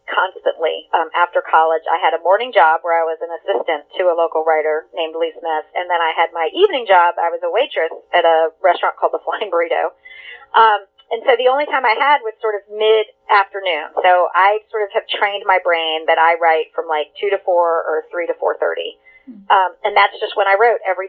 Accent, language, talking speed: American, English, 225 wpm